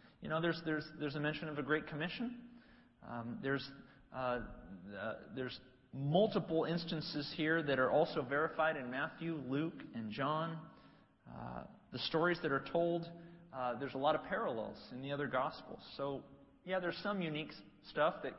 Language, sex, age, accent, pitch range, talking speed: English, male, 40-59, American, 130-165 Hz, 165 wpm